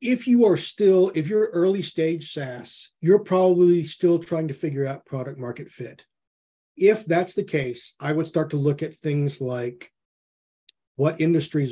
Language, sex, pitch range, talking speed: English, male, 135-170 Hz, 170 wpm